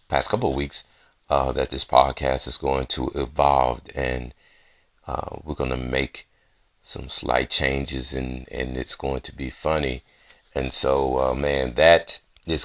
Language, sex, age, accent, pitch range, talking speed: English, male, 30-49, American, 65-75 Hz, 155 wpm